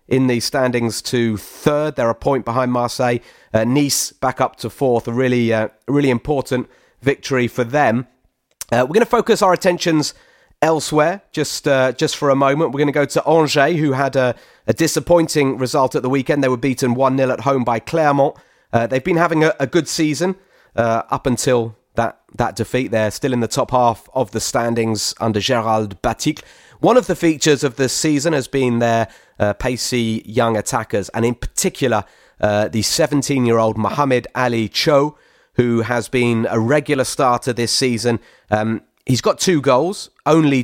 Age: 30-49